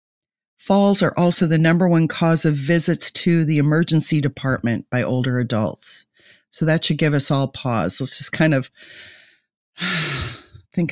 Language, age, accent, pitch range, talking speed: English, 40-59, American, 145-175 Hz, 155 wpm